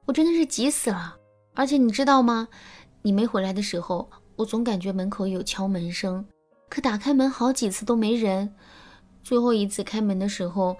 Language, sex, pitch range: Chinese, female, 190-240 Hz